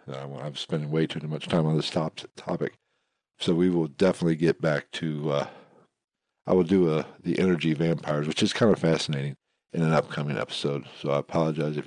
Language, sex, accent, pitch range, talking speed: English, male, American, 80-105 Hz, 195 wpm